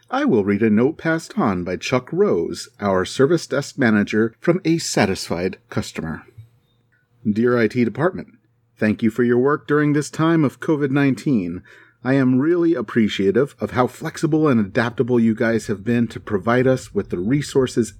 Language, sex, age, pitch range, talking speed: English, male, 40-59, 110-150 Hz, 165 wpm